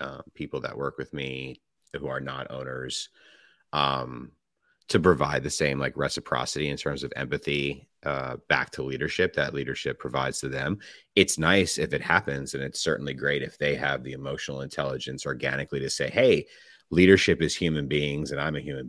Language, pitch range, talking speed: English, 70-85 Hz, 180 wpm